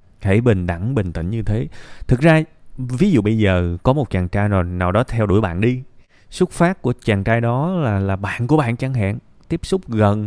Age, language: 20-39, Vietnamese